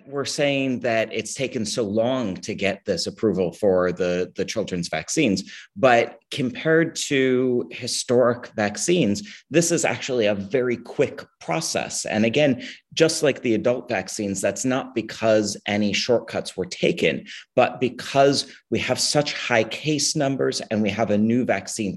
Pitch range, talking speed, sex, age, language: 100-130 Hz, 155 wpm, male, 30-49, English